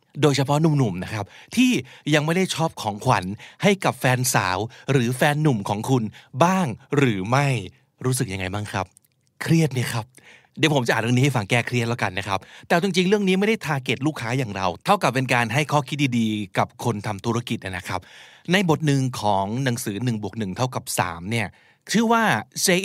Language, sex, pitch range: Thai, male, 115-150 Hz